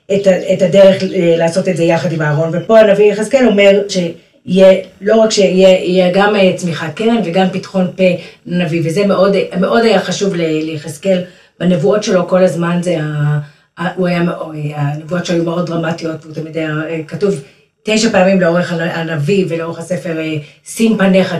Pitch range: 165-190 Hz